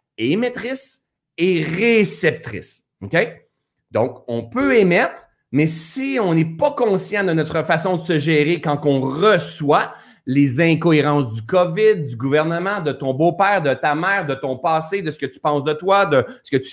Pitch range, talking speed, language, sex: 145-205 Hz, 175 wpm, French, male